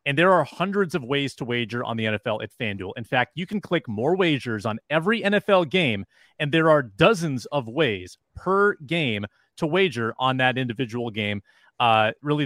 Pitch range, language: 120-165 Hz, English